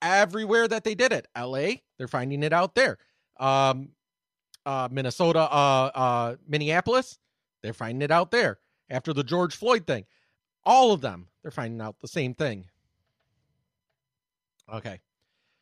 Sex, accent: male, American